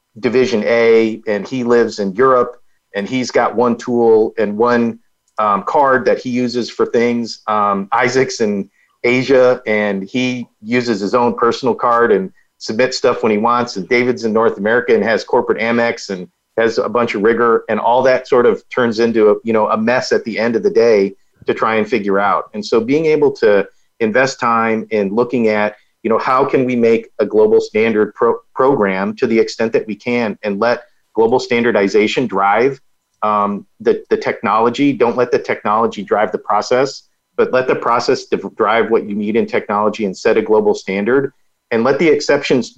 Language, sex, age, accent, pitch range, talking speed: English, male, 40-59, American, 110-130 Hz, 195 wpm